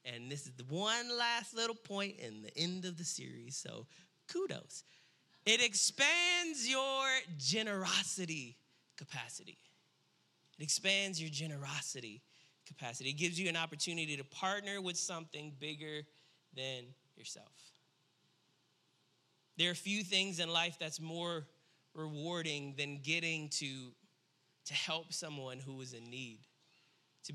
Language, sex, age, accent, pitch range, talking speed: English, male, 20-39, American, 145-180 Hz, 125 wpm